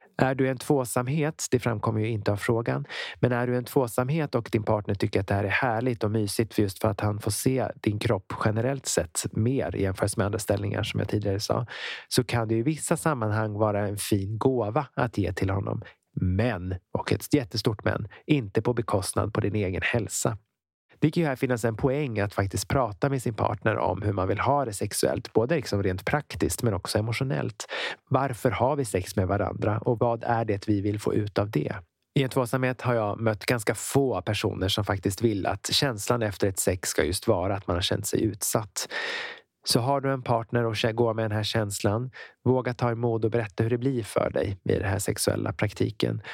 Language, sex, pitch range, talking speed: Swedish, male, 105-130 Hz, 215 wpm